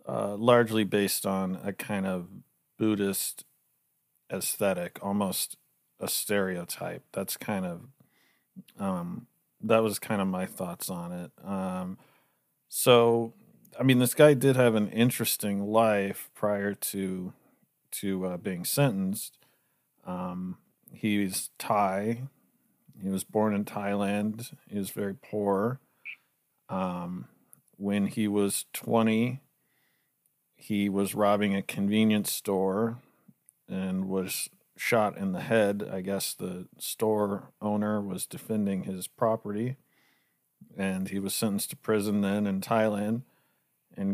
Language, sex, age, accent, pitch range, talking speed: English, male, 40-59, American, 100-120 Hz, 120 wpm